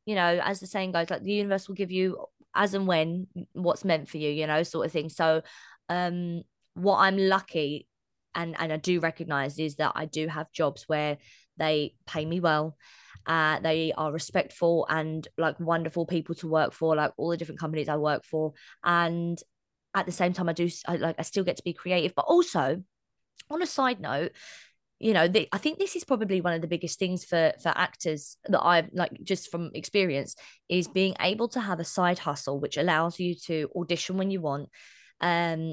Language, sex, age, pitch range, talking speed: English, female, 20-39, 160-185 Hz, 205 wpm